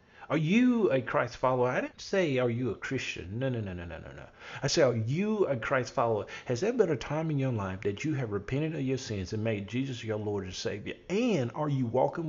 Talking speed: 255 wpm